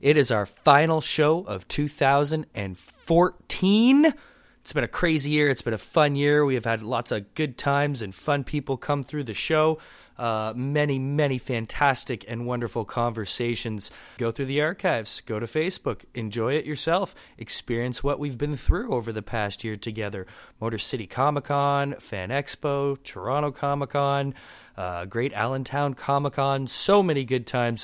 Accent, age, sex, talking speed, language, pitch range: American, 30-49, male, 155 wpm, English, 110-140 Hz